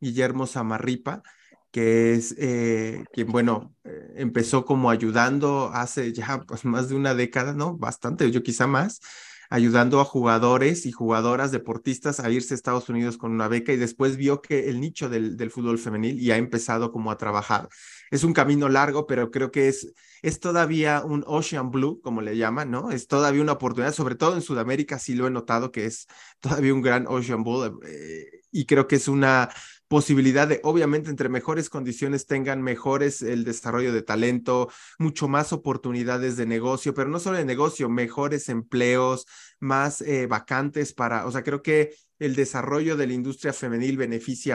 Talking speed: 180 wpm